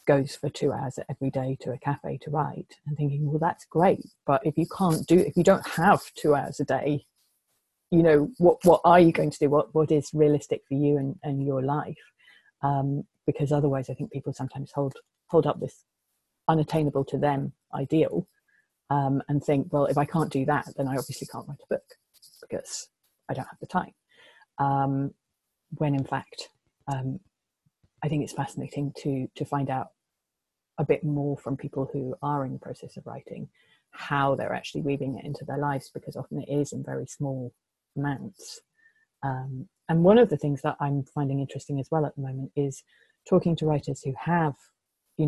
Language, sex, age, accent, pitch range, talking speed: English, female, 30-49, British, 140-155 Hz, 195 wpm